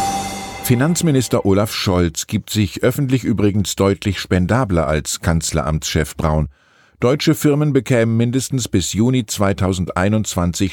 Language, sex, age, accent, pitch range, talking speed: German, male, 50-69, German, 85-120 Hz, 105 wpm